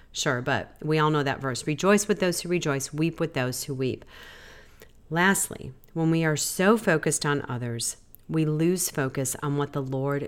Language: English